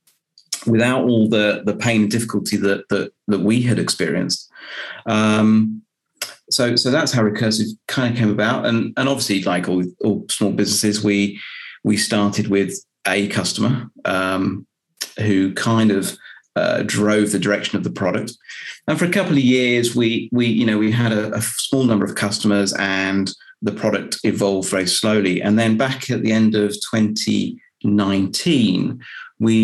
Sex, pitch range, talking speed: male, 100-115 Hz, 165 wpm